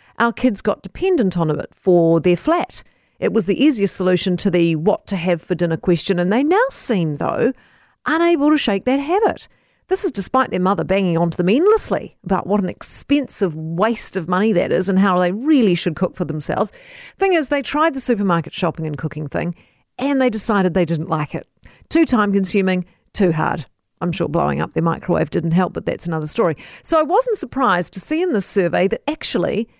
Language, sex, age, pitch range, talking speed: English, female, 40-59, 180-285 Hz, 205 wpm